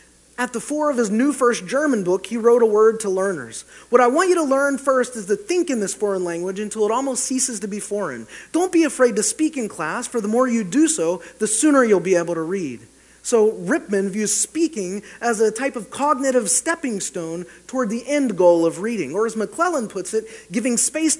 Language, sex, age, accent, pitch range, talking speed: English, male, 30-49, American, 200-265 Hz, 225 wpm